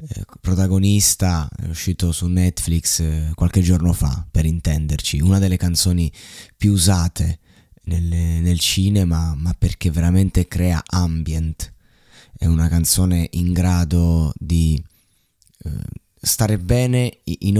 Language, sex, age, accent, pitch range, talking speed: Italian, male, 20-39, native, 85-95 Hz, 110 wpm